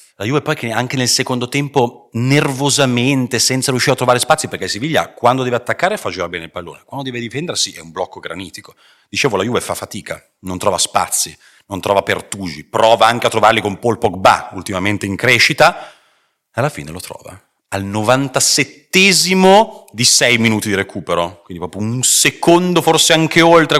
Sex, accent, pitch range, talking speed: male, native, 100-140 Hz, 175 wpm